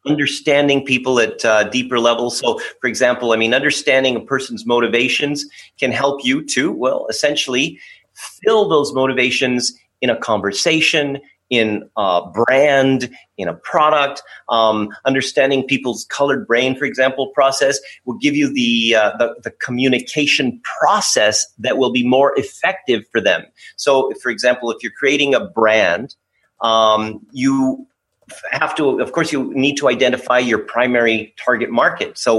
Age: 30-49